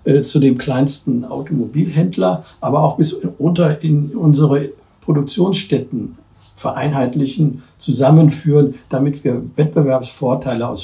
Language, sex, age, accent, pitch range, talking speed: German, male, 60-79, German, 130-155 Hz, 100 wpm